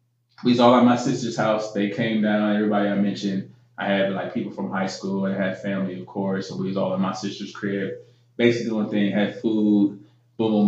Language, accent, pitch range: English, American, 105-120 Hz